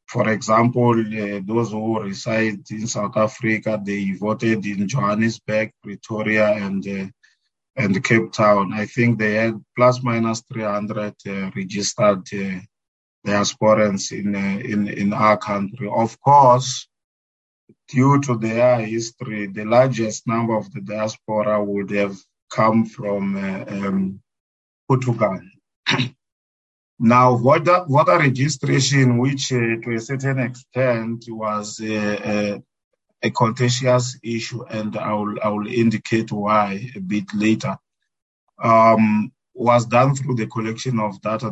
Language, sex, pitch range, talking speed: English, male, 100-120 Hz, 135 wpm